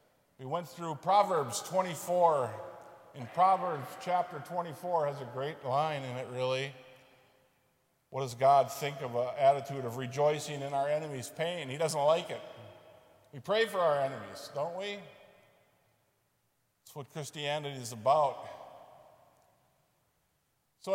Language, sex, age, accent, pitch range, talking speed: English, male, 50-69, American, 125-150 Hz, 130 wpm